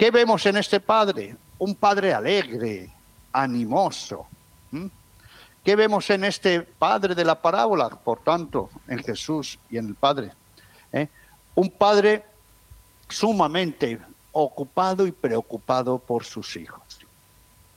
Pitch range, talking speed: 130-205 Hz, 115 wpm